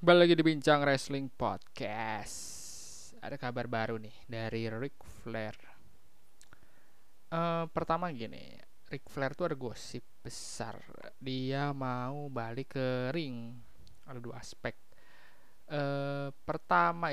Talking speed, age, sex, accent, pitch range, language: 110 wpm, 20-39, male, native, 115-135 Hz, Indonesian